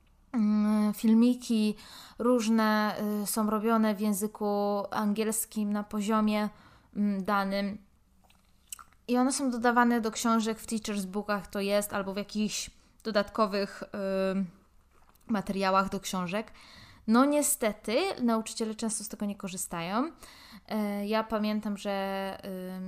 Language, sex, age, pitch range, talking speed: Polish, female, 20-39, 200-220 Hz, 110 wpm